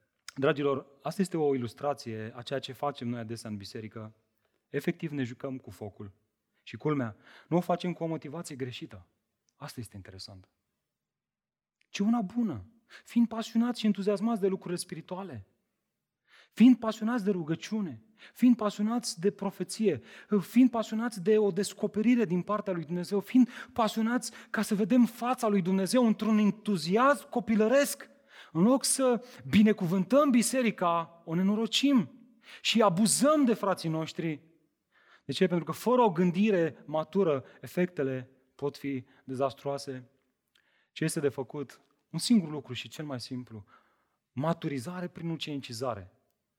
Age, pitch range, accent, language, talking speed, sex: 30-49, 140-215 Hz, native, Romanian, 135 wpm, male